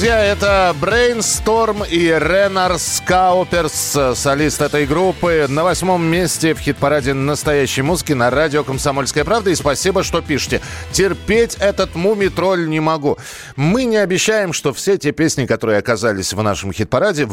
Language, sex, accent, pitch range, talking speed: Russian, male, native, 100-155 Hz, 140 wpm